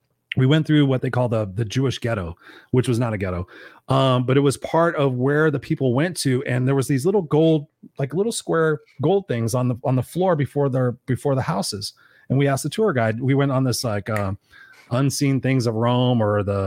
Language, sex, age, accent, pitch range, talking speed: English, male, 30-49, American, 125-160 Hz, 245 wpm